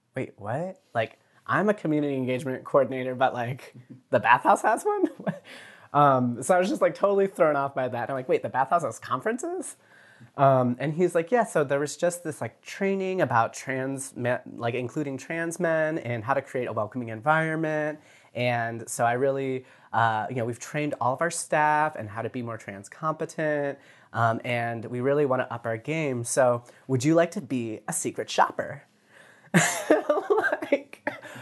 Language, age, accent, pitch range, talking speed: English, 30-49, American, 120-165 Hz, 185 wpm